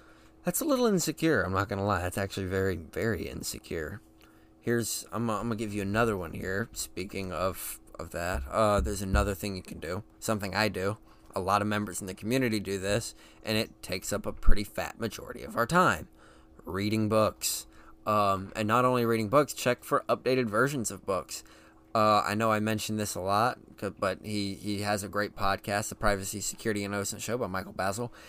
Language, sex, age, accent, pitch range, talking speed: English, male, 20-39, American, 100-120 Hz, 205 wpm